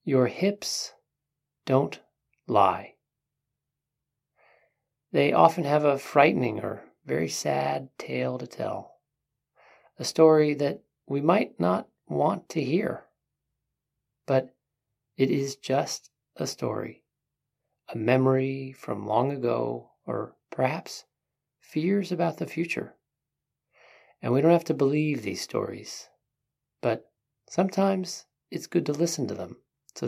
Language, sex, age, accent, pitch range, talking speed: English, male, 40-59, American, 120-150 Hz, 115 wpm